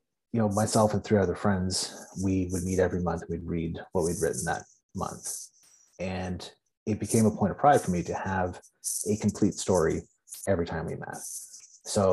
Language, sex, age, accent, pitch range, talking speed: English, male, 30-49, American, 95-115 Hz, 190 wpm